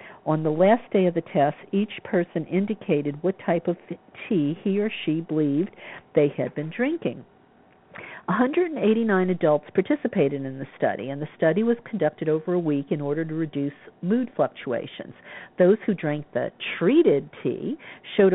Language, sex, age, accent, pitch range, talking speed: English, female, 50-69, American, 150-205 Hz, 160 wpm